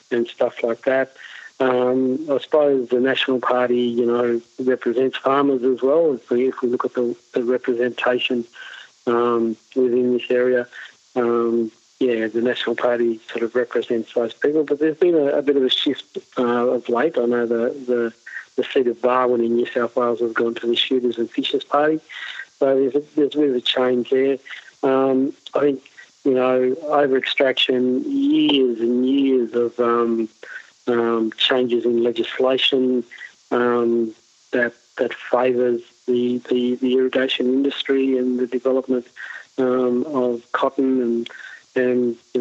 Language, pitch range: English, 120-130 Hz